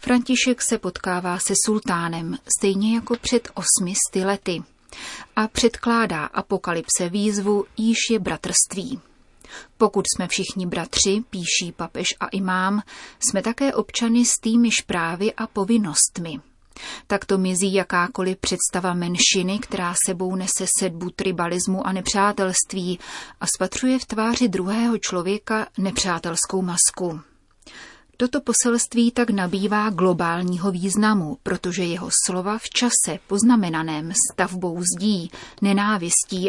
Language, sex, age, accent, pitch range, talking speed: Czech, female, 30-49, native, 180-215 Hz, 110 wpm